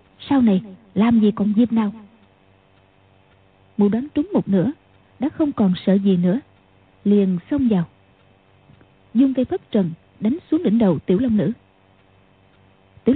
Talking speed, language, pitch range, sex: 150 wpm, Vietnamese, 180-250 Hz, female